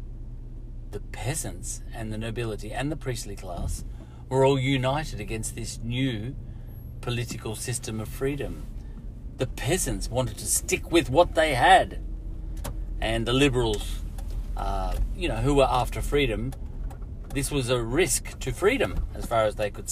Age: 40-59